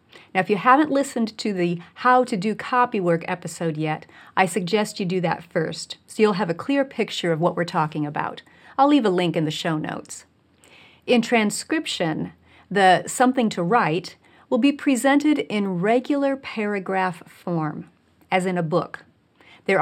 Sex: female